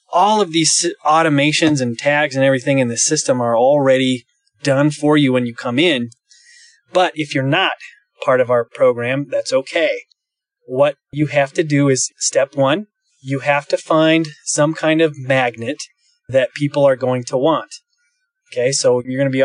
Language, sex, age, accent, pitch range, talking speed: English, male, 20-39, American, 135-175 Hz, 180 wpm